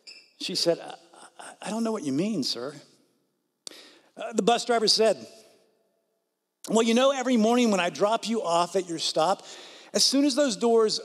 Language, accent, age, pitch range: English, American, 50-69, 160-230 Hz